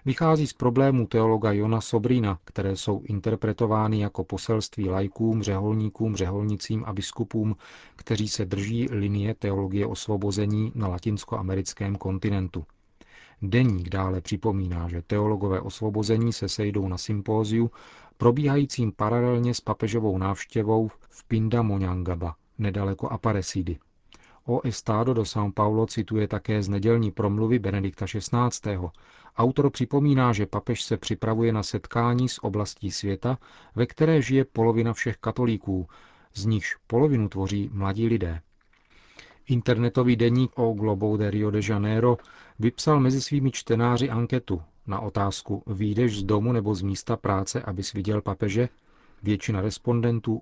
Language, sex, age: Czech, male, 40-59